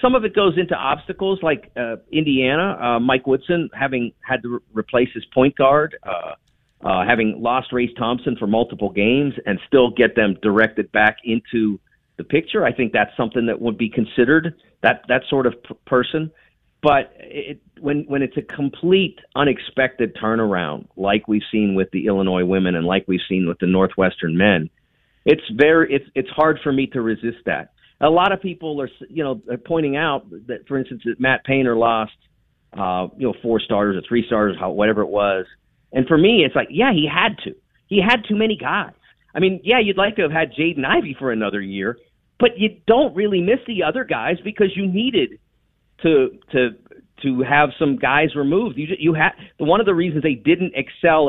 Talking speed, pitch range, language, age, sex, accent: 200 wpm, 115-160 Hz, English, 40-59, male, American